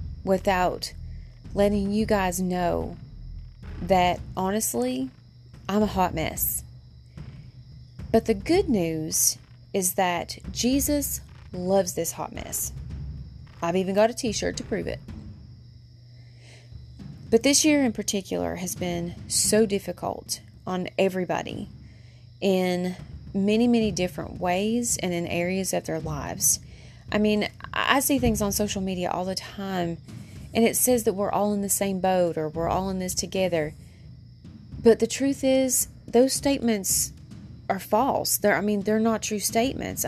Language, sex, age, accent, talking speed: English, female, 30-49, American, 140 wpm